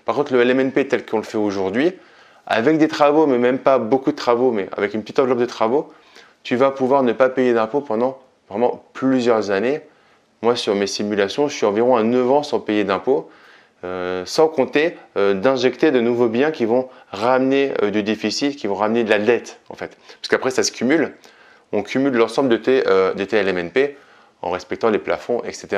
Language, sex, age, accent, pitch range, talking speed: French, male, 20-39, French, 115-145 Hz, 210 wpm